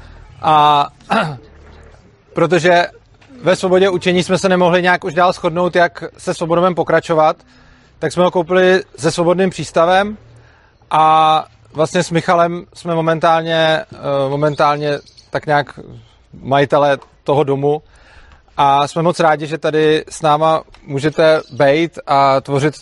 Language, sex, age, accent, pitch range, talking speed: Czech, male, 30-49, native, 145-165 Hz, 125 wpm